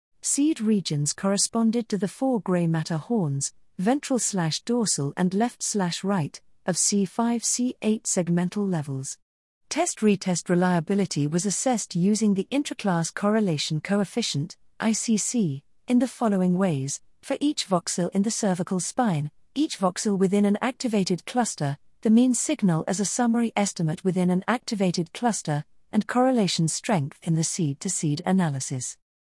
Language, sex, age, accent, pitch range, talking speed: English, female, 50-69, British, 160-215 Hz, 125 wpm